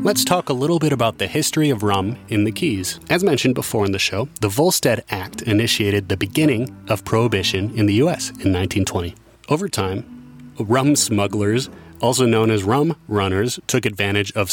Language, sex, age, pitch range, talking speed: English, male, 30-49, 100-135 Hz, 180 wpm